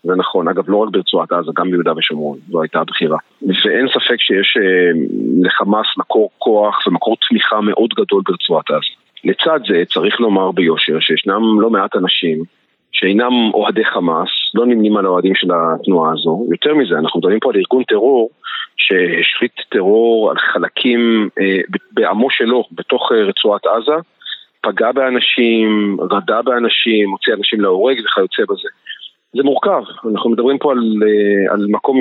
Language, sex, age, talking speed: Hebrew, male, 40-59, 150 wpm